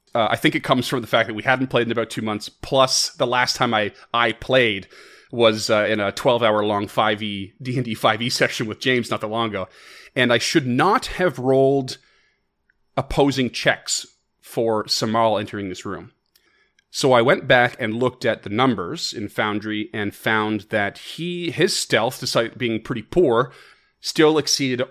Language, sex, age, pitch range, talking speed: English, male, 30-49, 105-130 Hz, 180 wpm